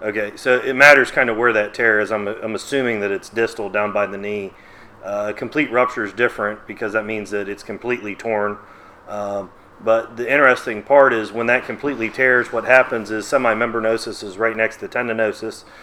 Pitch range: 110-125 Hz